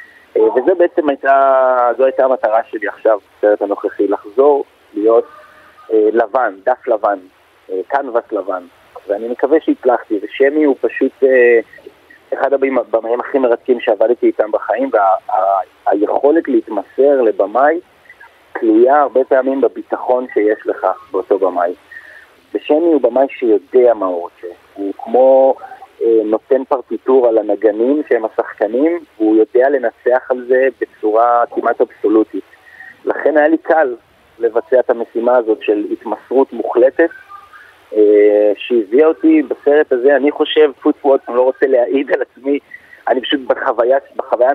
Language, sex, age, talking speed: Hebrew, male, 30-49, 130 wpm